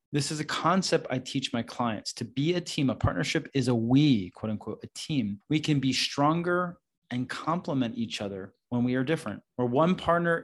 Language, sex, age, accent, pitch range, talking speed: English, male, 30-49, American, 120-155 Hz, 205 wpm